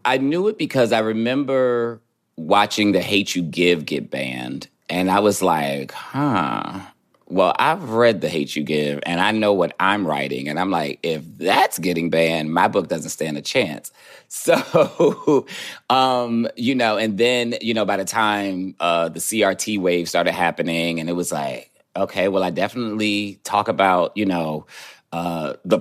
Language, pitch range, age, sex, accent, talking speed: English, 85-105 Hz, 30-49, male, American, 175 wpm